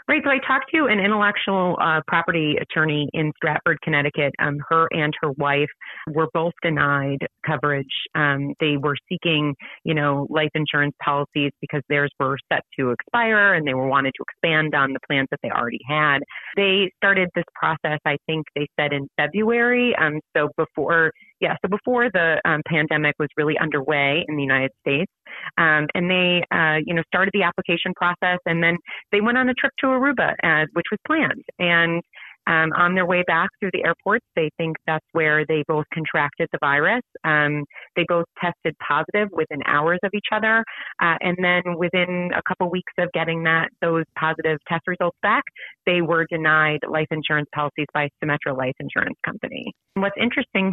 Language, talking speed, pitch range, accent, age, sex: English, 185 wpm, 150-180 Hz, American, 30-49, female